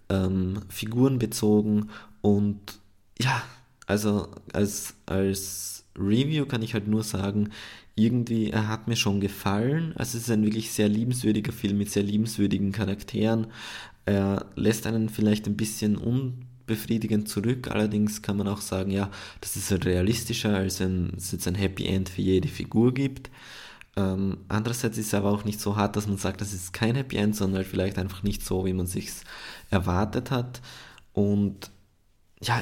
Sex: male